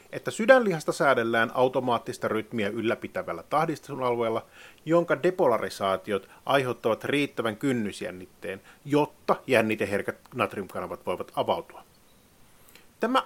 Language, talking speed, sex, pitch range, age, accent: Finnish, 80 wpm, male, 110-170 Hz, 30-49, native